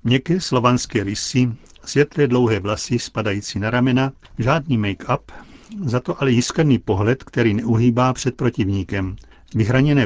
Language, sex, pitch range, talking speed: Czech, male, 110-135 Hz, 125 wpm